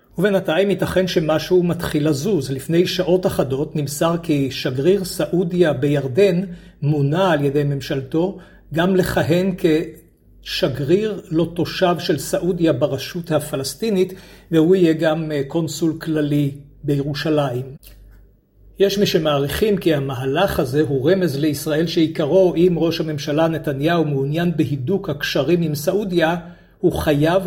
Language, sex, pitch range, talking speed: Hebrew, male, 145-180 Hz, 120 wpm